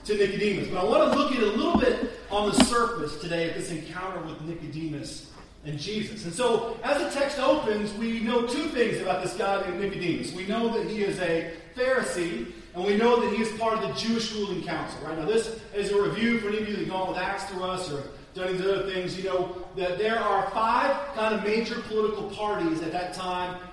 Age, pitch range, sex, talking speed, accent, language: 30-49, 165-215 Hz, male, 235 wpm, American, English